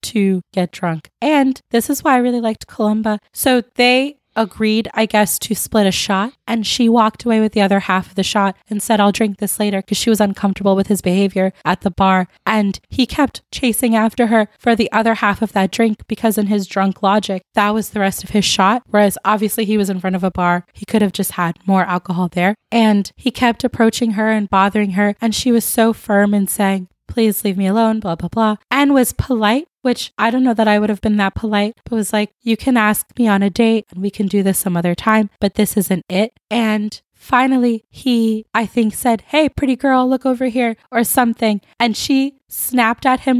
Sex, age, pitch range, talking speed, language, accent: female, 20-39, 200-240 Hz, 230 wpm, English, American